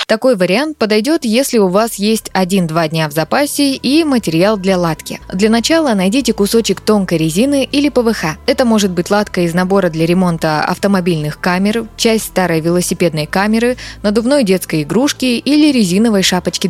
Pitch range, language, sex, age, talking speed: 175-235 Hz, Russian, female, 20-39, 155 wpm